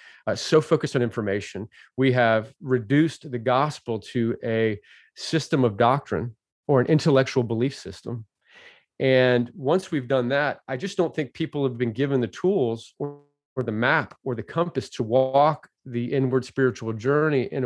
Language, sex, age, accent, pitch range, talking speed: English, male, 30-49, American, 120-145 Hz, 165 wpm